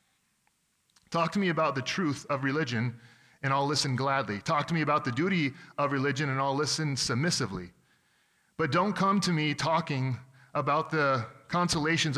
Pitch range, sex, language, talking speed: 125-150 Hz, male, English, 165 wpm